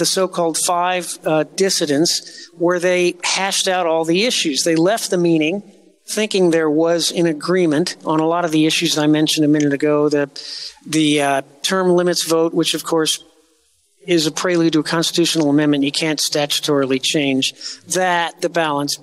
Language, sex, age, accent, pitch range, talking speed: English, male, 40-59, American, 155-180 Hz, 175 wpm